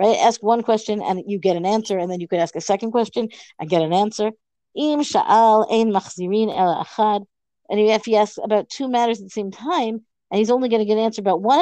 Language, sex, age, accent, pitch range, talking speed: English, female, 50-69, American, 195-230 Hz, 215 wpm